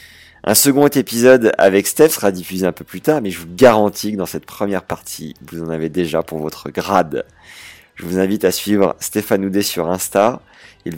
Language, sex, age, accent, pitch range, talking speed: French, male, 30-49, French, 85-105 Hz, 200 wpm